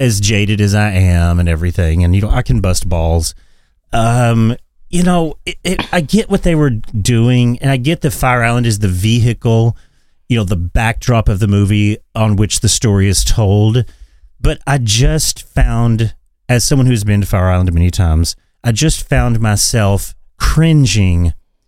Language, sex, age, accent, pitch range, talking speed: English, male, 30-49, American, 95-125 Hz, 180 wpm